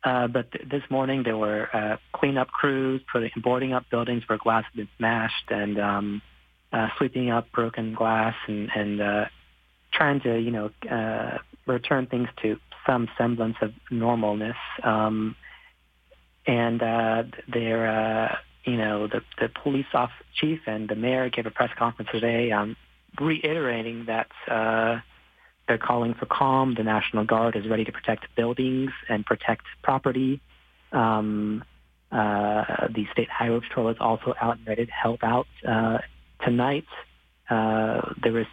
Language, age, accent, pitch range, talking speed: English, 30-49, American, 110-125 Hz, 155 wpm